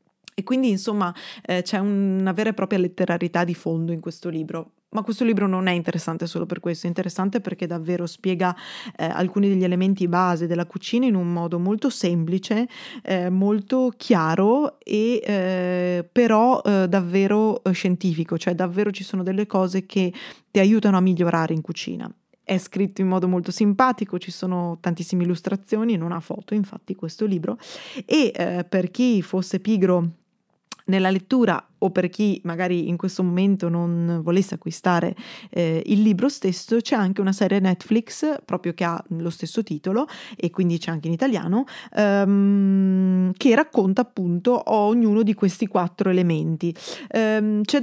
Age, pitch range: 20-39, 175-215 Hz